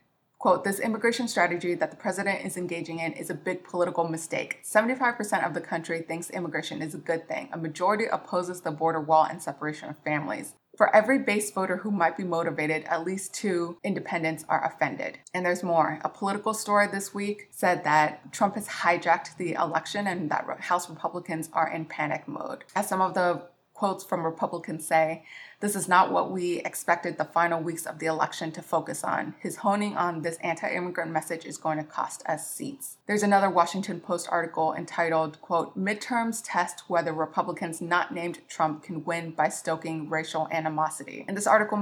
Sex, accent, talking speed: female, American, 185 wpm